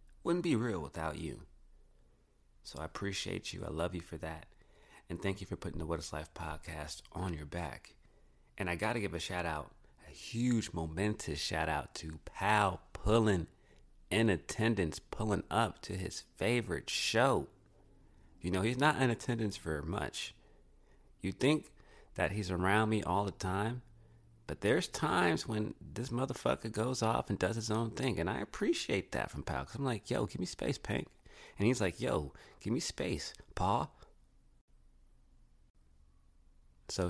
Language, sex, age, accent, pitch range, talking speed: English, male, 30-49, American, 65-105 Hz, 170 wpm